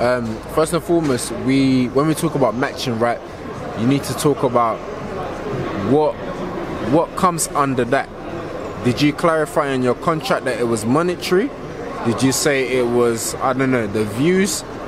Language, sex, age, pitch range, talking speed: English, male, 20-39, 125-150 Hz, 165 wpm